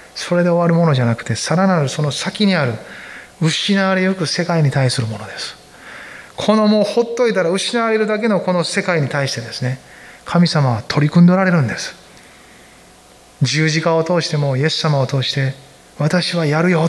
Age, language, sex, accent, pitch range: 20-39, Japanese, male, native, 150-195 Hz